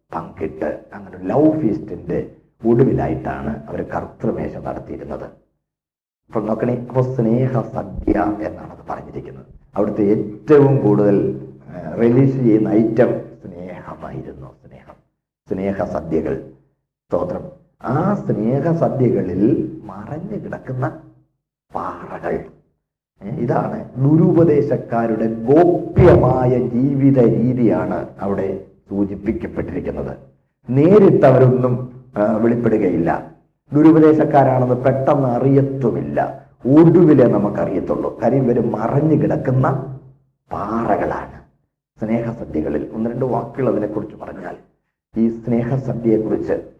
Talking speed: 75 wpm